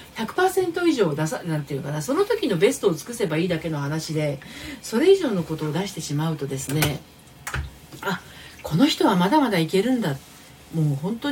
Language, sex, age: Japanese, female, 40-59